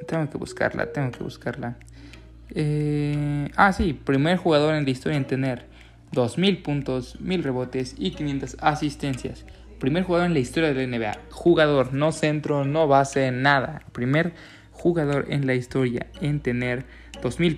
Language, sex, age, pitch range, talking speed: English, male, 20-39, 120-150 Hz, 150 wpm